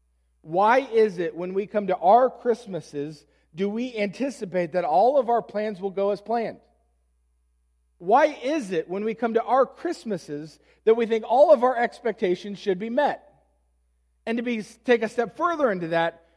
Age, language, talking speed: 40-59, English, 175 wpm